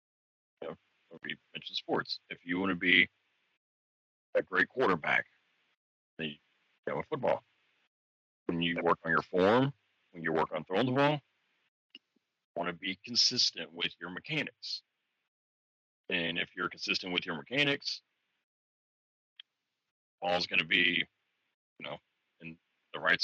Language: English